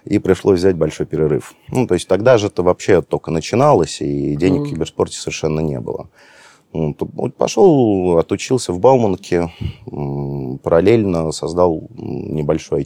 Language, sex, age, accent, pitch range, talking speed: Russian, male, 30-49, native, 70-95 Hz, 130 wpm